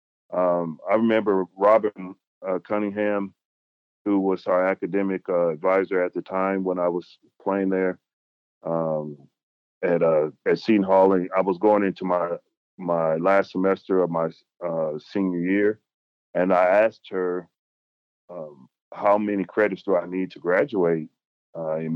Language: English